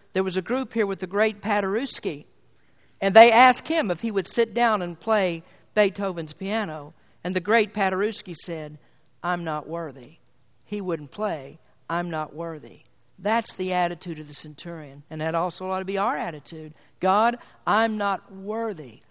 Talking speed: 170 wpm